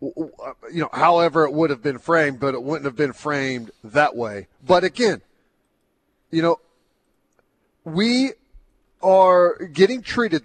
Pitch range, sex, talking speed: 145-175 Hz, male, 140 wpm